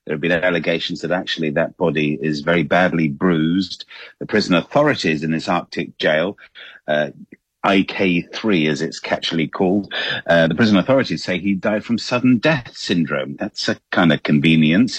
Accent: British